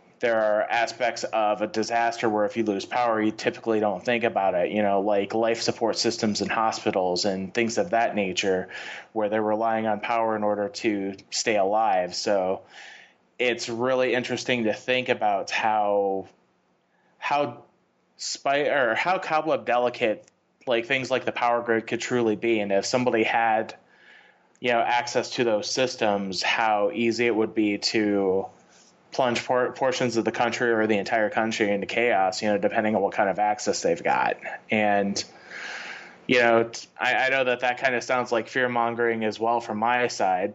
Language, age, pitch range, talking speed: English, 30-49, 105-120 Hz, 175 wpm